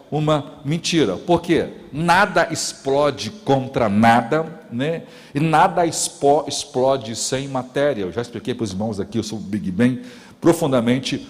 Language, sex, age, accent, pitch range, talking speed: Portuguese, male, 60-79, Brazilian, 110-145 Hz, 145 wpm